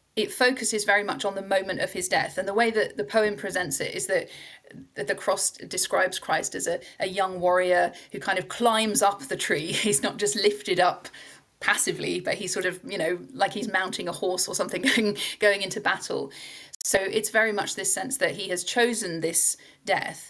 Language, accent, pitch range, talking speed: English, British, 185-215 Hz, 210 wpm